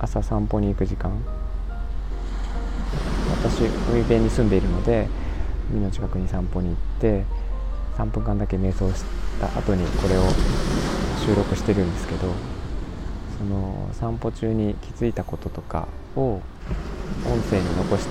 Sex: male